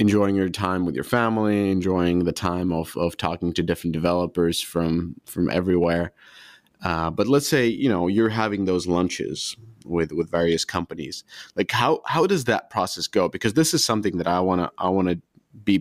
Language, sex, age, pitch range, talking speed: English, male, 20-39, 90-115 Hz, 190 wpm